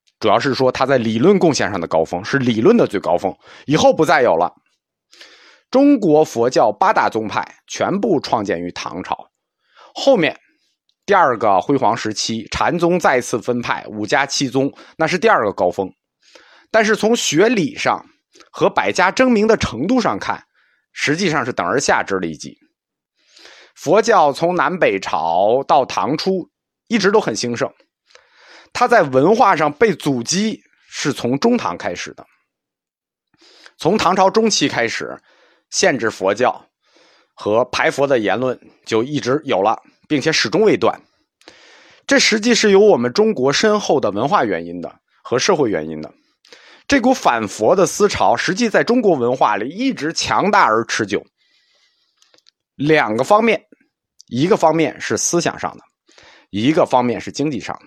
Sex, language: male, Chinese